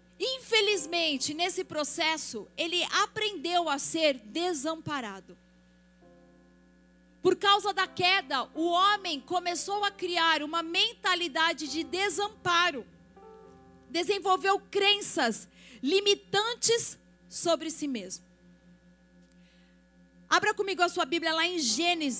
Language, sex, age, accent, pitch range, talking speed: Portuguese, female, 40-59, Brazilian, 210-340 Hz, 105 wpm